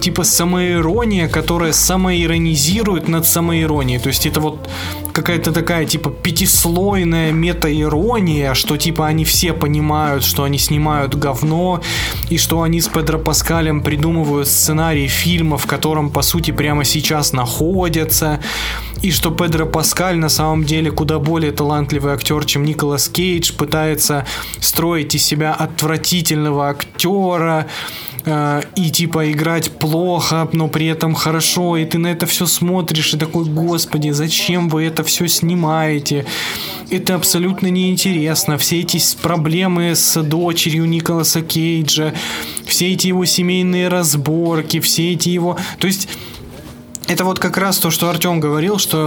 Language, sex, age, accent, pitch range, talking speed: Russian, male, 20-39, native, 150-170 Hz, 135 wpm